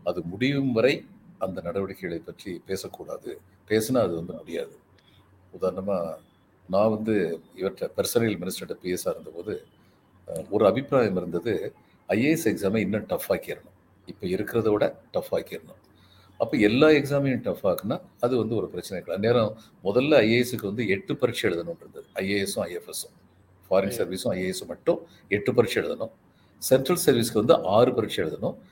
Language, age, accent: Tamil, 50-69, native